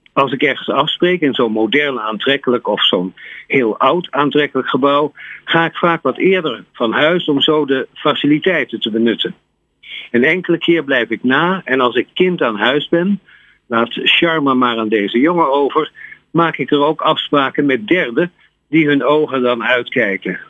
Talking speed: 175 wpm